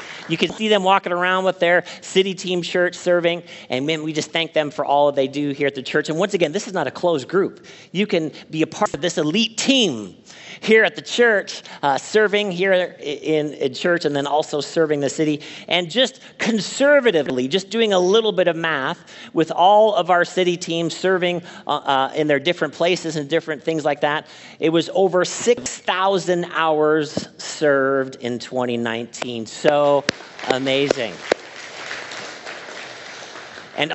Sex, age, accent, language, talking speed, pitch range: male, 40-59, American, English, 175 wpm, 155-195 Hz